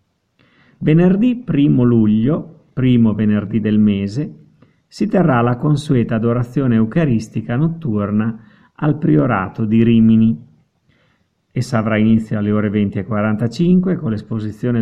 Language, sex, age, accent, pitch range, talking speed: Italian, male, 50-69, native, 110-160 Hz, 105 wpm